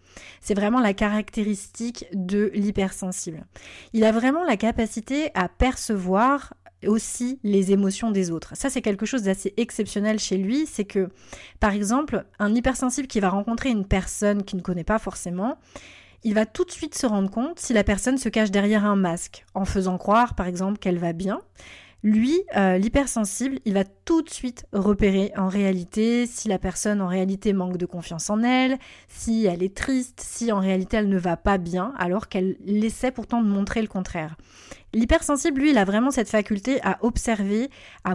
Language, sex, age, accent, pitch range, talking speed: French, female, 20-39, French, 195-235 Hz, 185 wpm